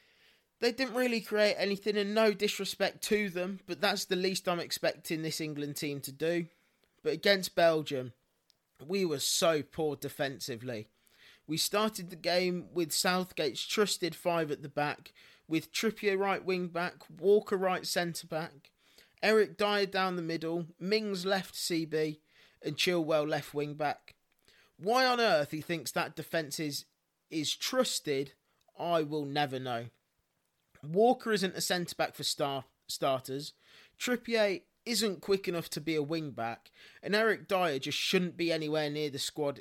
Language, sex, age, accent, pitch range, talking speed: English, male, 20-39, British, 150-195 Hz, 150 wpm